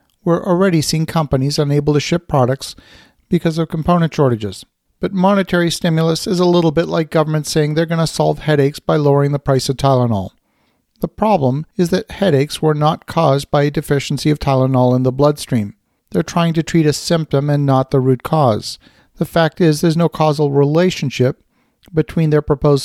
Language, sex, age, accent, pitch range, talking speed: English, male, 50-69, American, 140-165 Hz, 185 wpm